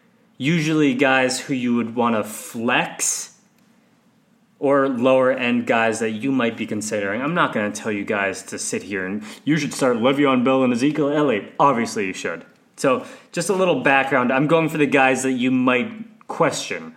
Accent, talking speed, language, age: American, 185 wpm, English, 20-39